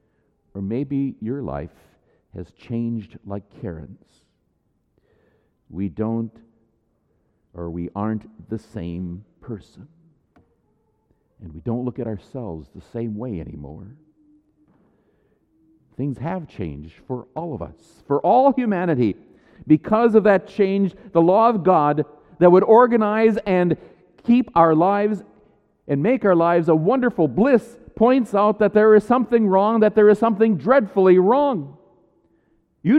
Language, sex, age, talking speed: English, male, 50-69, 130 wpm